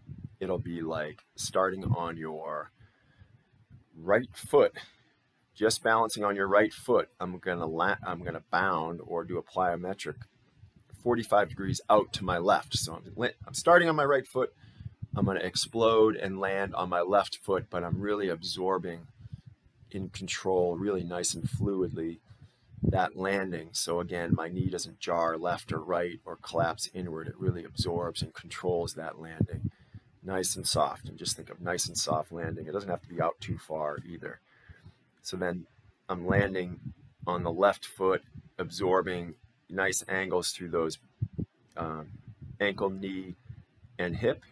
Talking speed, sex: 160 wpm, male